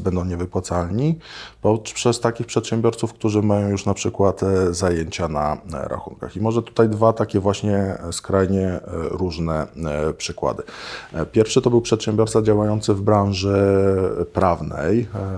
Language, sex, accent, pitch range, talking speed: Polish, male, native, 85-105 Hz, 115 wpm